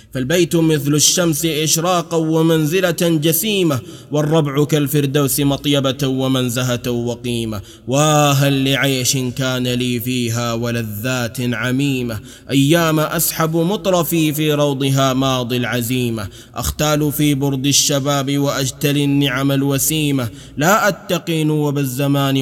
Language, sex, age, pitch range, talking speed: Arabic, male, 20-39, 125-155 Hz, 95 wpm